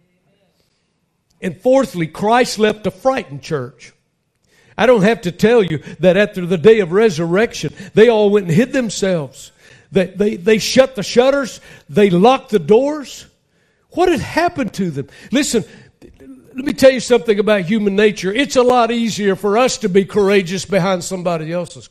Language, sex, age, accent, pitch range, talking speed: English, male, 60-79, American, 165-230 Hz, 165 wpm